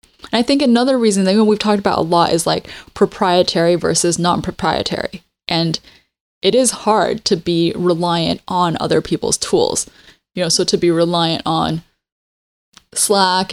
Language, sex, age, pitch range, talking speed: English, female, 10-29, 165-195 Hz, 155 wpm